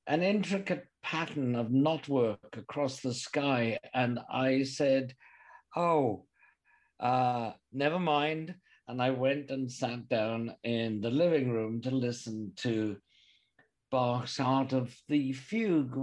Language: English